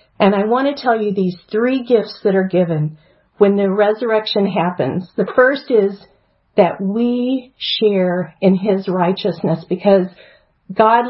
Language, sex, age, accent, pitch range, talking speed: English, female, 50-69, American, 190-230 Hz, 145 wpm